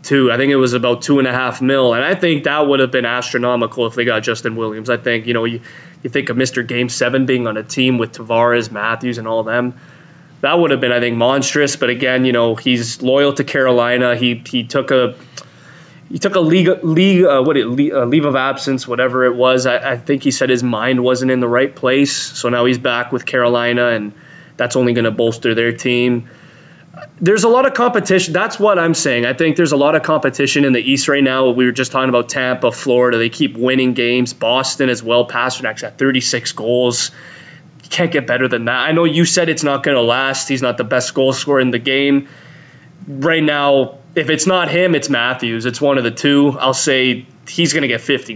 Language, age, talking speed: English, 20-39, 235 wpm